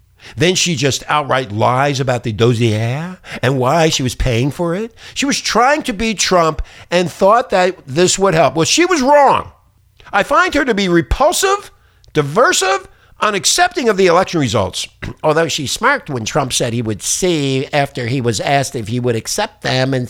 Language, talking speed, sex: English, 190 wpm, male